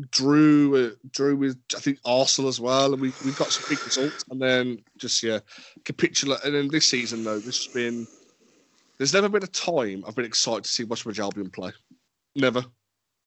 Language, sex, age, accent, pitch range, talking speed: English, male, 20-39, British, 115-135 Hz, 195 wpm